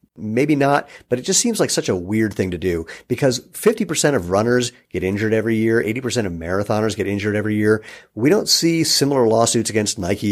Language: English